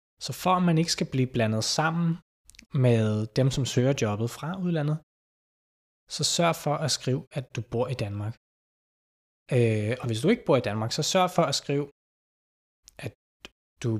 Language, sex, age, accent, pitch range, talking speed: Danish, male, 20-39, native, 115-160 Hz, 175 wpm